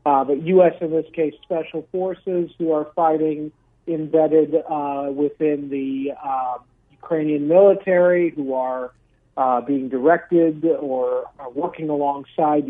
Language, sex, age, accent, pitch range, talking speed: English, male, 50-69, American, 150-190 Hz, 130 wpm